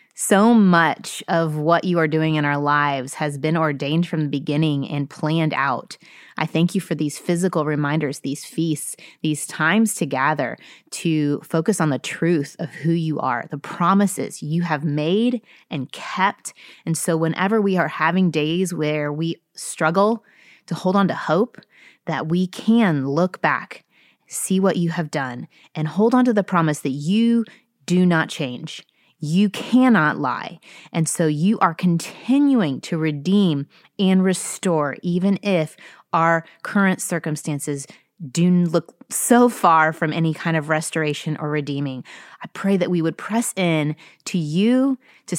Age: 30-49